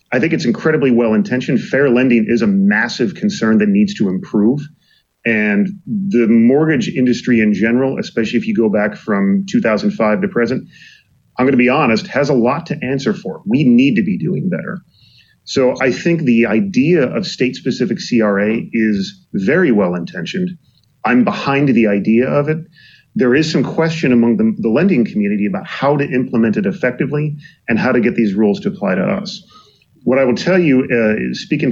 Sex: male